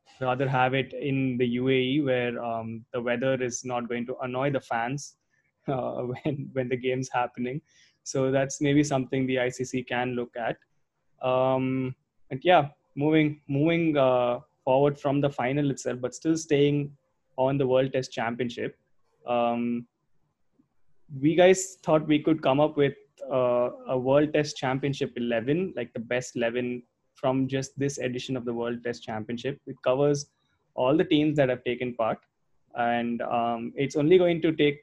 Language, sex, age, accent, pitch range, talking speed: English, male, 20-39, Indian, 125-140 Hz, 165 wpm